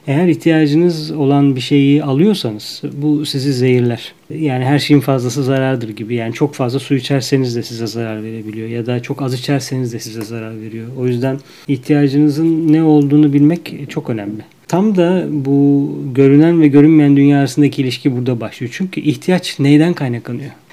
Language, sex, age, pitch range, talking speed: Turkish, male, 40-59, 130-155 Hz, 160 wpm